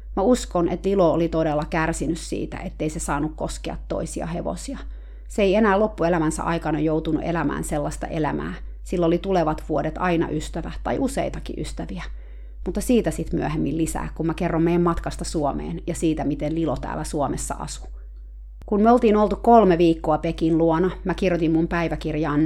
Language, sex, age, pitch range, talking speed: Finnish, female, 30-49, 155-185 Hz, 165 wpm